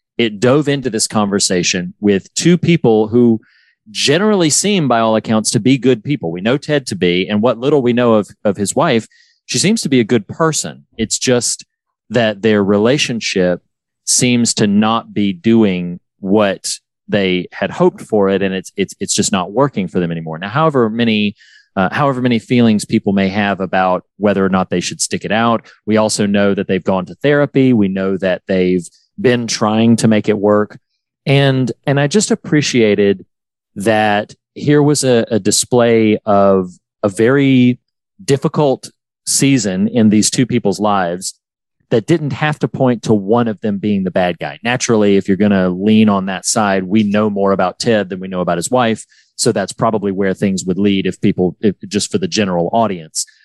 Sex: male